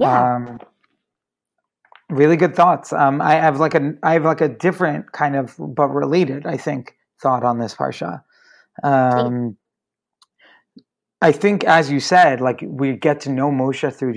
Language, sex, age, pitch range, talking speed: English, male, 30-49, 135-165 Hz, 155 wpm